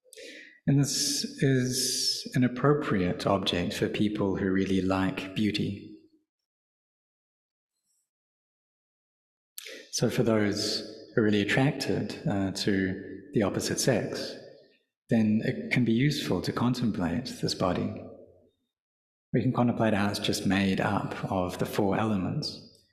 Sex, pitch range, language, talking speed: male, 95-130 Hz, English, 115 wpm